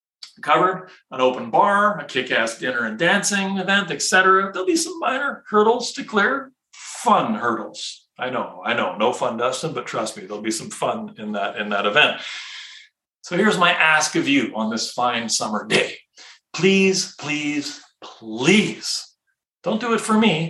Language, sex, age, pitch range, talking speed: English, male, 40-59, 150-215 Hz, 170 wpm